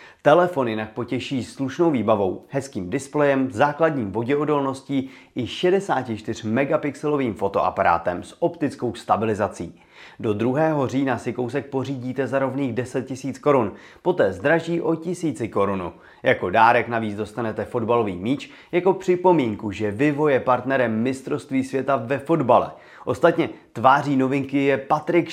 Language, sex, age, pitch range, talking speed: Czech, male, 30-49, 115-160 Hz, 125 wpm